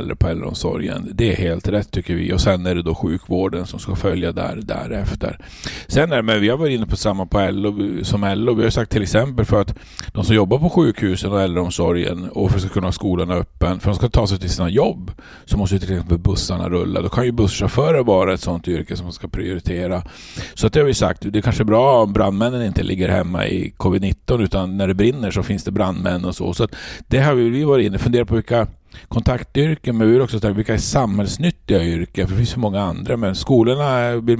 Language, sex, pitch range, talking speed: English, male, 95-115 Hz, 245 wpm